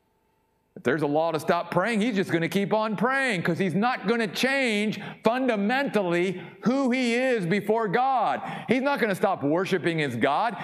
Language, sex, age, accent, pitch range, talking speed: English, male, 50-69, American, 130-220 Hz, 190 wpm